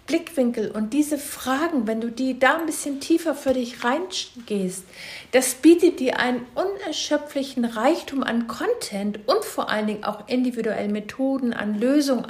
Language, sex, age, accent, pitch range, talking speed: German, female, 60-79, German, 220-270 Hz, 145 wpm